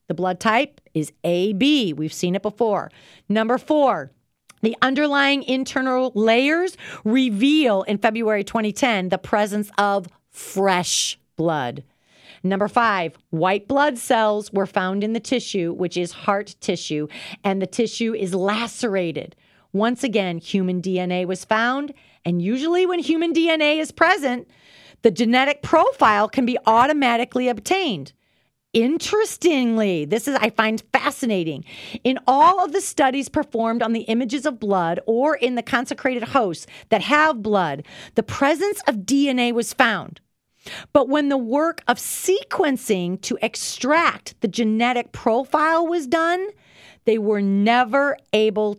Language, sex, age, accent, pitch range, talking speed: English, female, 40-59, American, 185-265 Hz, 135 wpm